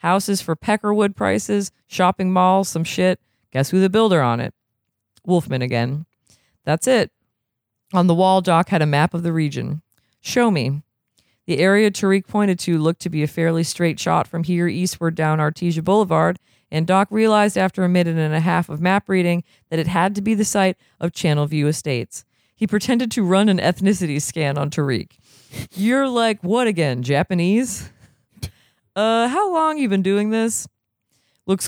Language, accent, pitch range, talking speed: English, American, 145-195 Hz, 175 wpm